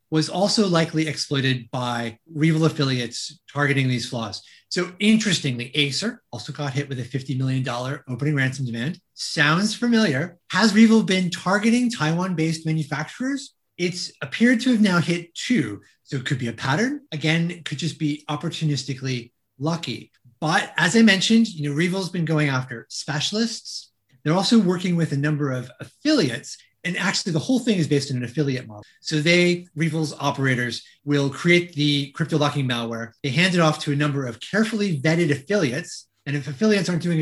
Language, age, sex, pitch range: English, 30-49, male, 135-180 Hz